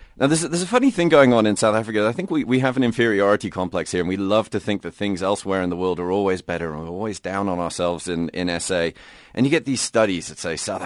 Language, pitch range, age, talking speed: English, 95-120 Hz, 30-49, 285 wpm